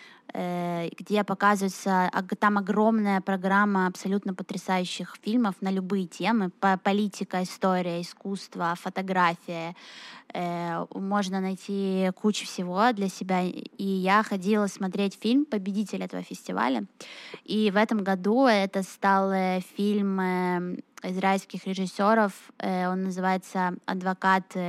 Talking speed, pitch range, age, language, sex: 95 wpm, 185-210 Hz, 20-39, Russian, female